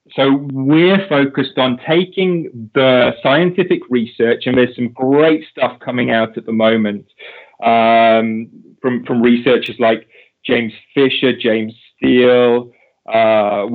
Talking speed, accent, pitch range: 120 wpm, British, 120-140 Hz